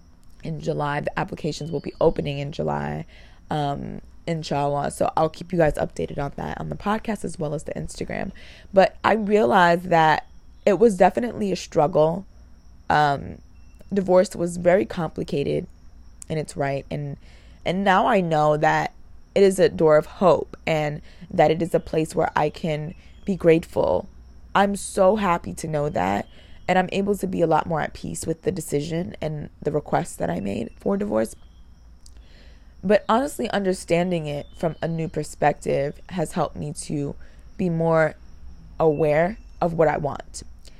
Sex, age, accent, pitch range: female, 20-39, American, 145-175 Hz